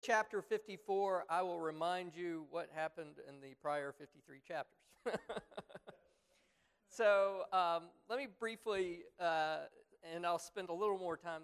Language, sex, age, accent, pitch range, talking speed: English, male, 40-59, American, 145-185 Hz, 135 wpm